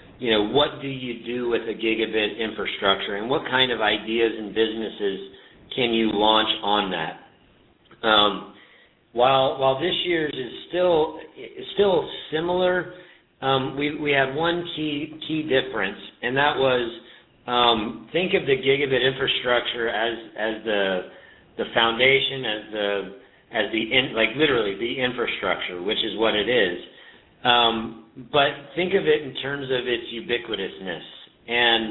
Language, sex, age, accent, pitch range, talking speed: English, male, 50-69, American, 110-145 Hz, 145 wpm